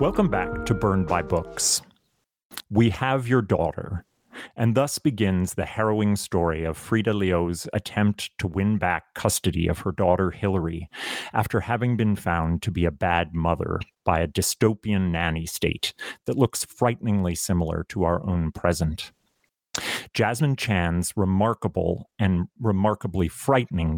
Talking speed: 140 wpm